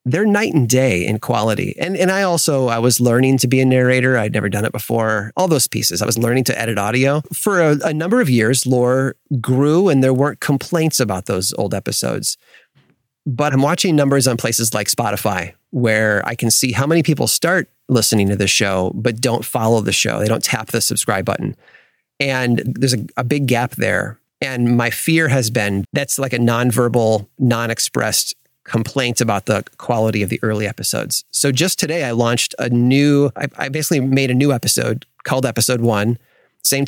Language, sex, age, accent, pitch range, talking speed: English, male, 30-49, American, 110-135 Hz, 195 wpm